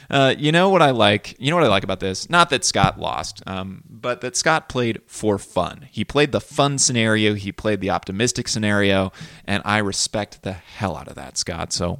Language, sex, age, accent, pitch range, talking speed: English, male, 20-39, American, 95-125 Hz, 220 wpm